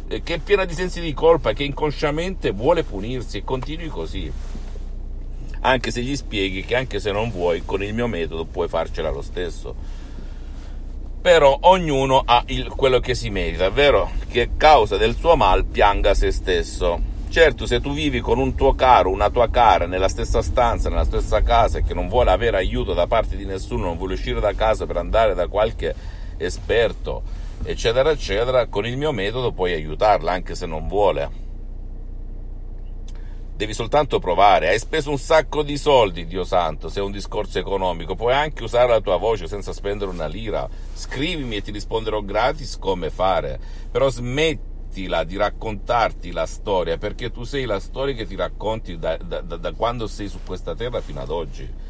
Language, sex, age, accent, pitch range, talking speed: Italian, male, 50-69, native, 90-135 Hz, 180 wpm